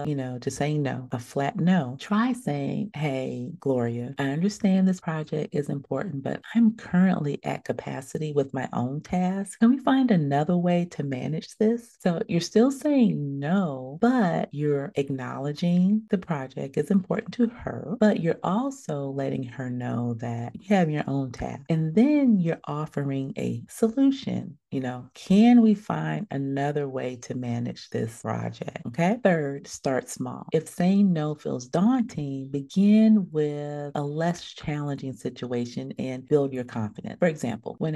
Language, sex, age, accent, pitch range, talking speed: English, female, 40-59, American, 130-190 Hz, 160 wpm